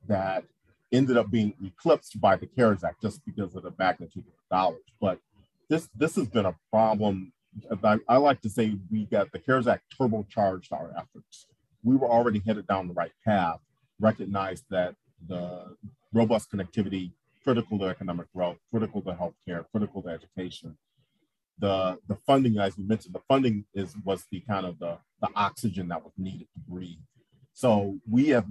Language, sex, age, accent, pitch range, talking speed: English, male, 40-59, American, 95-110 Hz, 175 wpm